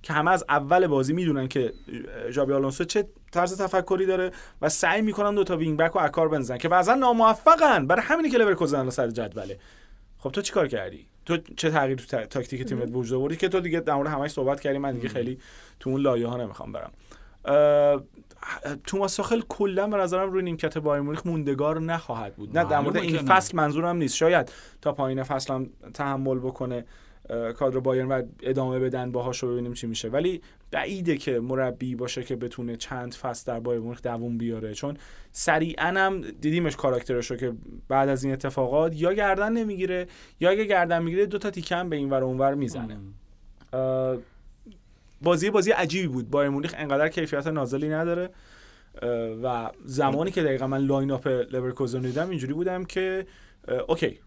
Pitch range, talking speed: 125-175 Hz, 170 wpm